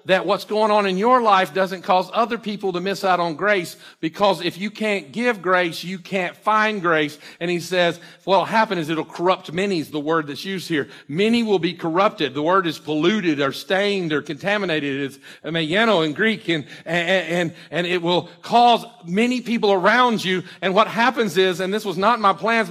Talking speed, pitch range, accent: 210 wpm, 190-265 Hz, American